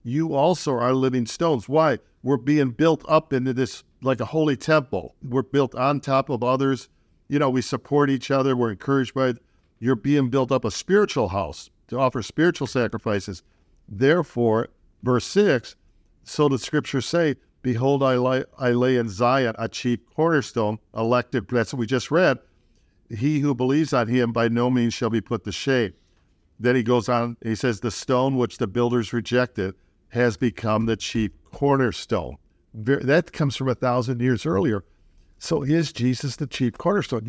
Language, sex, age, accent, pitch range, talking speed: English, male, 50-69, American, 115-140 Hz, 175 wpm